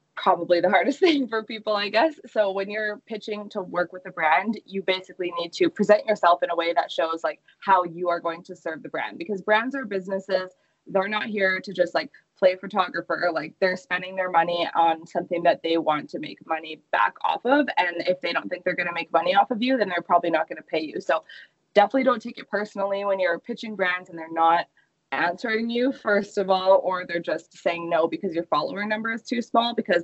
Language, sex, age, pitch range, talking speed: English, female, 20-39, 170-210 Hz, 235 wpm